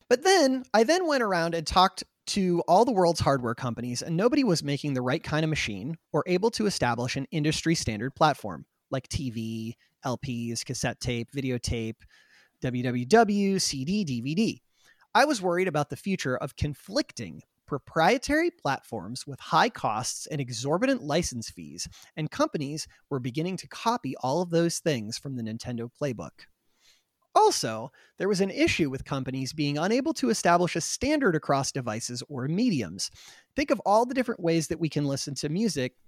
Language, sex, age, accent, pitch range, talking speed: English, male, 30-49, American, 130-200 Hz, 165 wpm